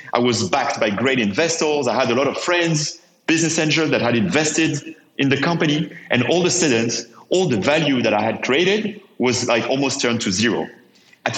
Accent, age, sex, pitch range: French, 40-59, male, 120-150 Hz